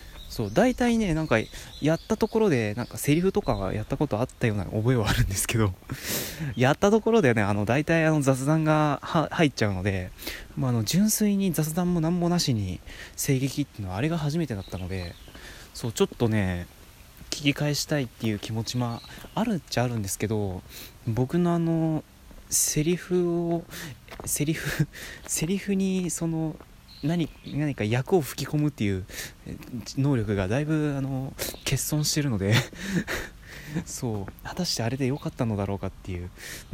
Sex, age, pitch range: male, 20-39, 110-160 Hz